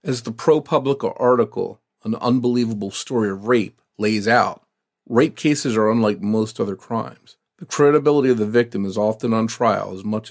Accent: American